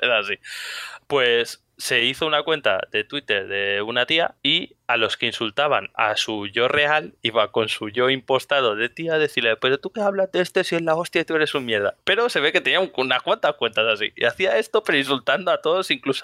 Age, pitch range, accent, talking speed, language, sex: 20-39, 130-190 Hz, Spanish, 235 wpm, English, male